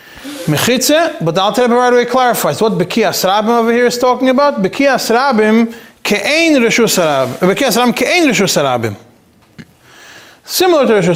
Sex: male